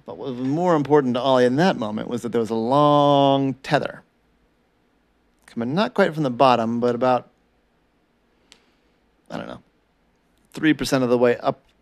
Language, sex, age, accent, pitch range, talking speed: English, male, 40-59, American, 115-145 Hz, 170 wpm